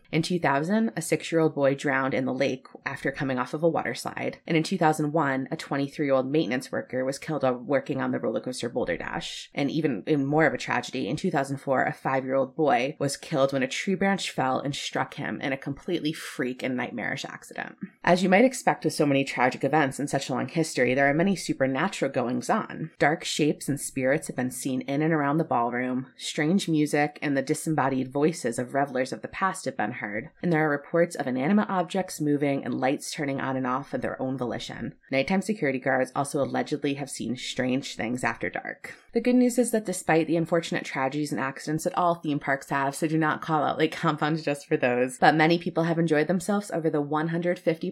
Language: English